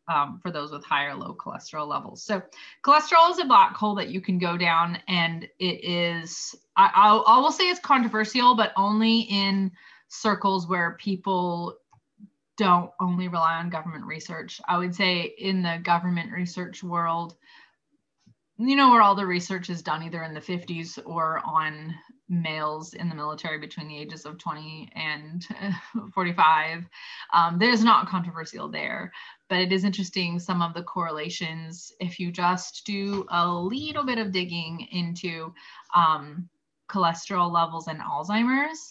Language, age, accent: English, 20-39, American